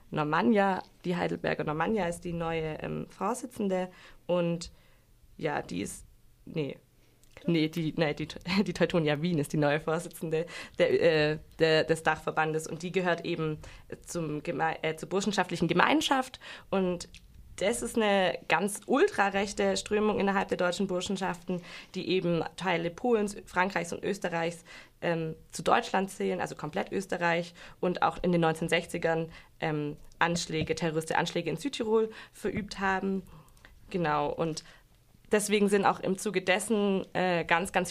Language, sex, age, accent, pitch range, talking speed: German, female, 20-39, German, 160-195 Hz, 140 wpm